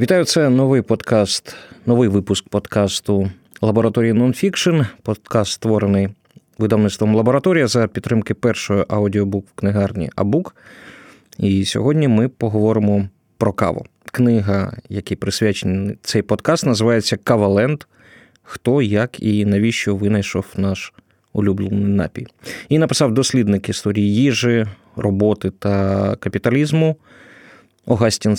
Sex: male